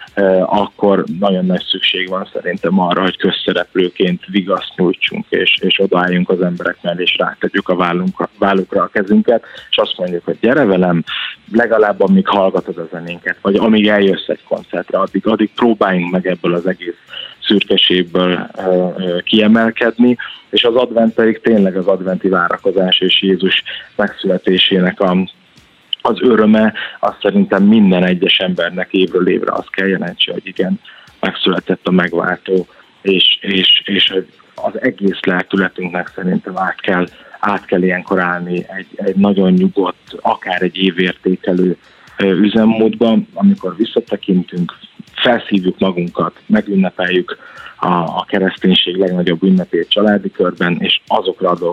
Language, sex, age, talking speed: Hungarian, male, 20-39, 130 wpm